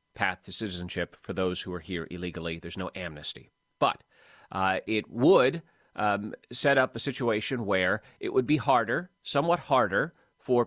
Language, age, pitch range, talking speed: English, 30-49, 105-140 Hz, 165 wpm